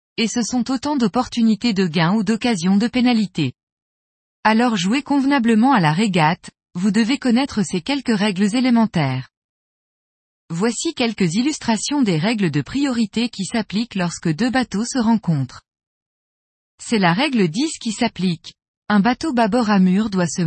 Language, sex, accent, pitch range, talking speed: French, female, French, 180-245 Hz, 150 wpm